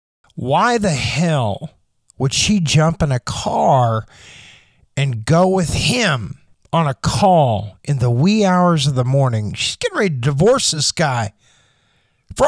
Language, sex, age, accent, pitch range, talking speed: English, male, 50-69, American, 125-165 Hz, 150 wpm